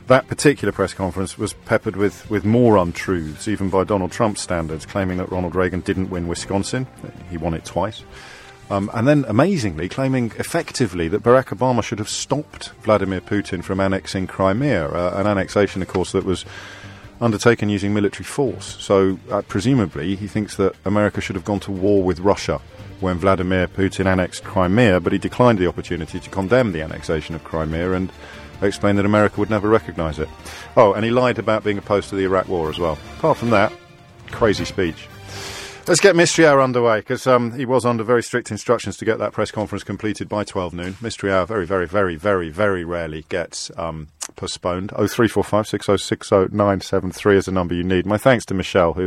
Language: English